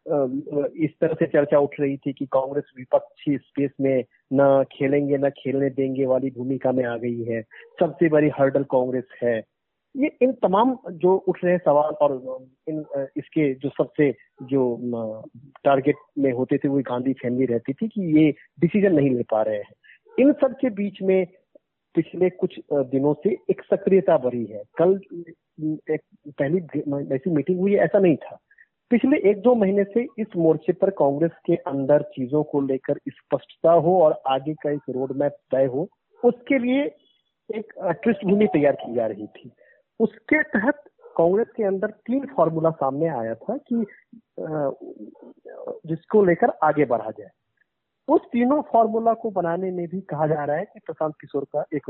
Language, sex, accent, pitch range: Hindi, male, native, 140-210 Hz